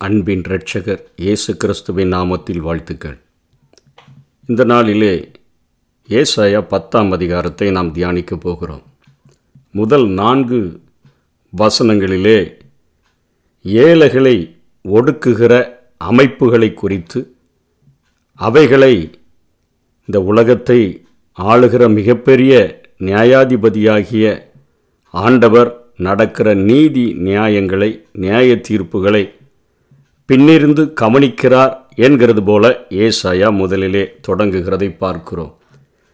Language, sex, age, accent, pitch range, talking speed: Tamil, male, 50-69, native, 100-130 Hz, 70 wpm